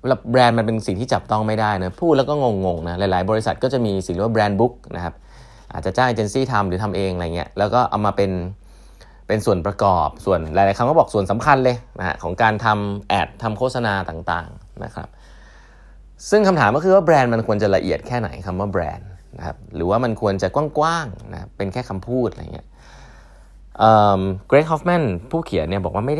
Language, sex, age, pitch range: Thai, male, 20-39, 90-120 Hz